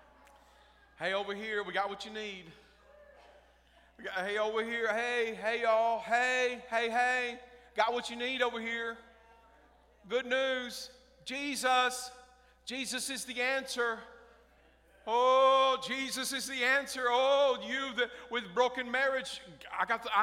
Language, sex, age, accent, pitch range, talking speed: English, male, 40-59, American, 245-300 Hz, 135 wpm